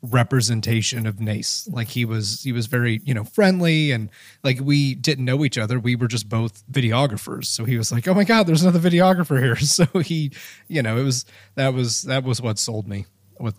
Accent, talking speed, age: American, 215 wpm, 30-49